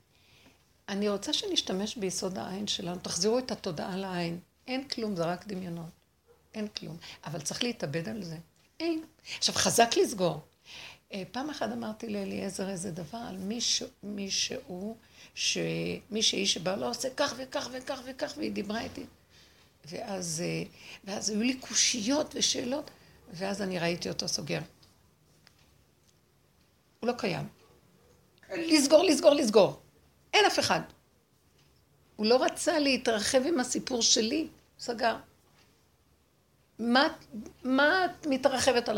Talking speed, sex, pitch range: 120 wpm, female, 195-270 Hz